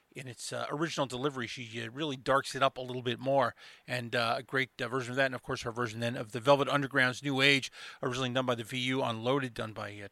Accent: American